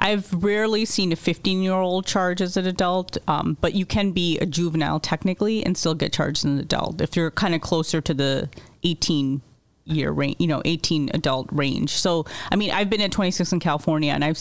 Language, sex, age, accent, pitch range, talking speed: English, female, 30-49, American, 150-185 Hz, 215 wpm